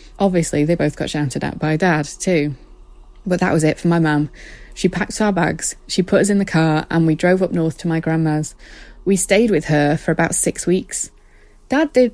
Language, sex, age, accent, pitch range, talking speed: English, female, 20-39, British, 155-190 Hz, 215 wpm